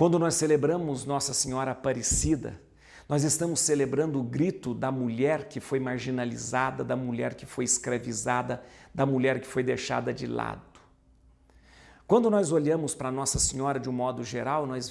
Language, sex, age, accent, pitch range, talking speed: Portuguese, male, 50-69, Brazilian, 125-175 Hz, 155 wpm